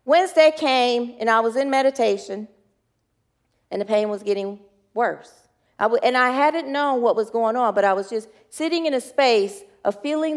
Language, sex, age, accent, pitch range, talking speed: English, female, 40-59, American, 230-310 Hz, 190 wpm